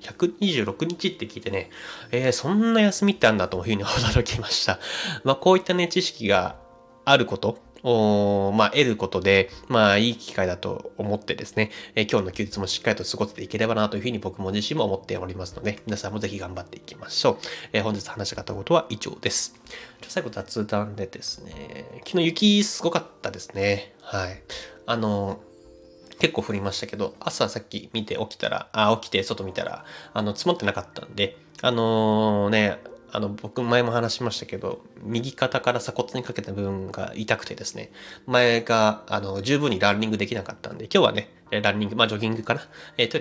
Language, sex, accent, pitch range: Japanese, male, native, 100-130 Hz